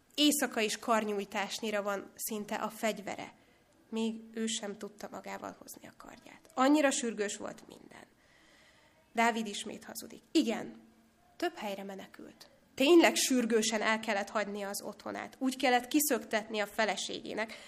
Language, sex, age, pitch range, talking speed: Hungarian, female, 20-39, 210-245 Hz, 130 wpm